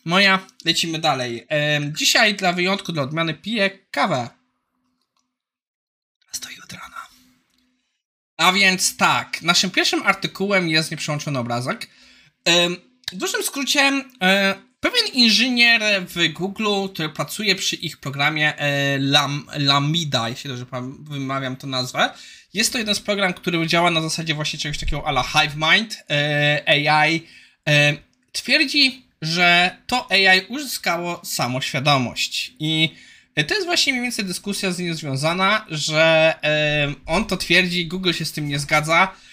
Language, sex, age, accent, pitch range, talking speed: Polish, male, 20-39, native, 145-195 Hz, 140 wpm